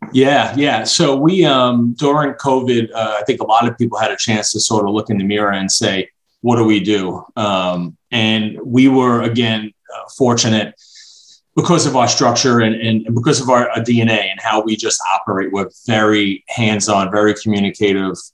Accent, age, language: American, 30-49, English